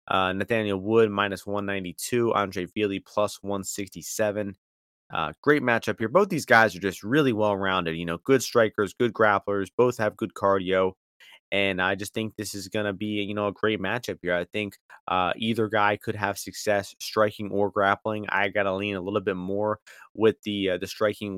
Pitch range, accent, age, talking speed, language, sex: 100-115 Hz, American, 30-49, 195 wpm, English, male